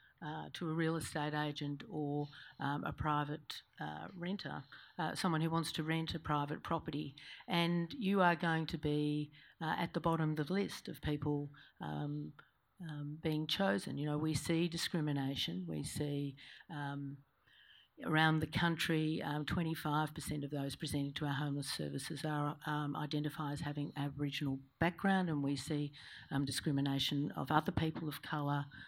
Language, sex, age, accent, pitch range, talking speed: English, female, 50-69, Australian, 145-165 Hz, 160 wpm